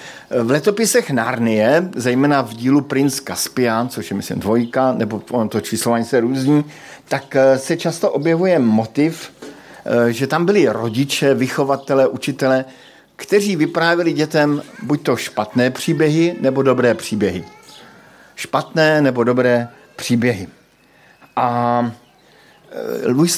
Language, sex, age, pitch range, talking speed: Slovak, male, 50-69, 120-150 Hz, 115 wpm